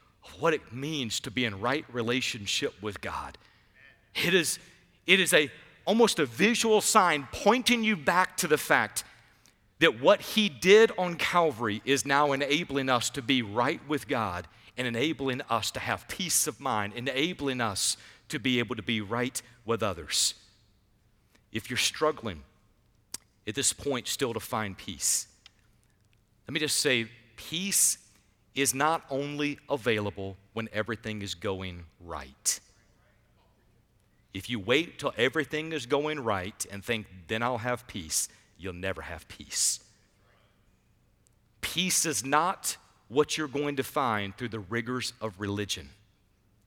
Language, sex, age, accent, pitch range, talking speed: English, male, 50-69, American, 105-140 Hz, 145 wpm